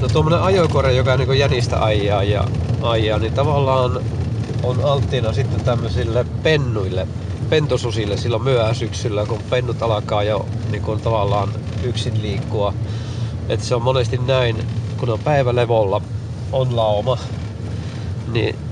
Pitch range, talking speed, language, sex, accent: 110-125 Hz, 115 wpm, Finnish, male, native